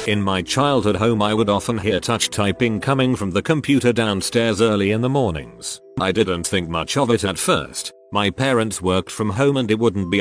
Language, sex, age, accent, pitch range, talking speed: English, male, 40-59, British, 100-125 Hz, 210 wpm